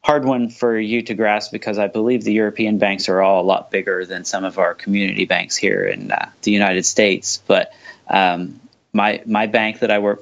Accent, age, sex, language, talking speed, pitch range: American, 30-49, male, English, 215 wpm, 95-115 Hz